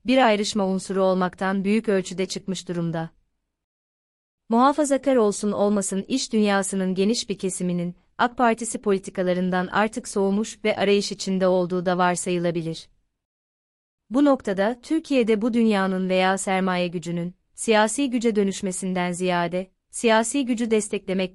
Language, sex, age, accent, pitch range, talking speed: Turkish, female, 30-49, native, 180-220 Hz, 120 wpm